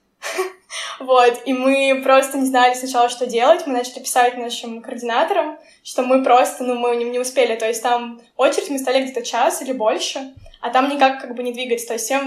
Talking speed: 205 wpm